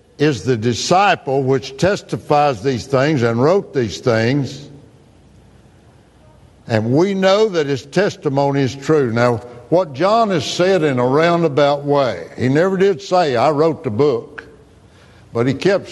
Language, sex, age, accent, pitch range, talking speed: English, male, 60-79, American, 110-150 Hz, 145 wpm